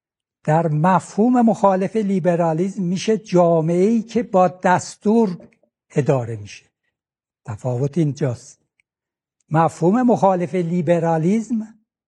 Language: Persian